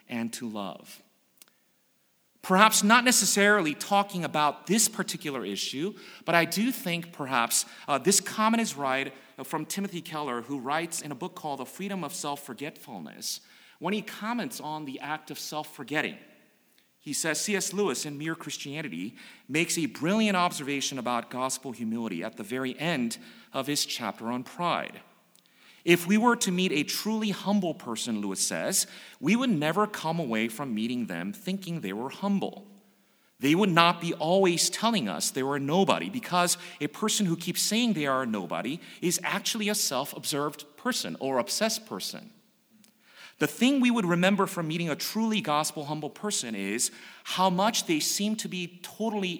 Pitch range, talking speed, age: 145-210 Hz, 165 wpm, 40-59